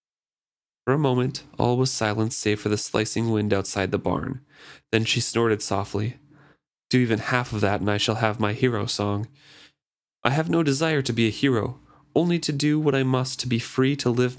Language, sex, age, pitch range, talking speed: English, male, 30-49, 110-145 Hz, 205 wpm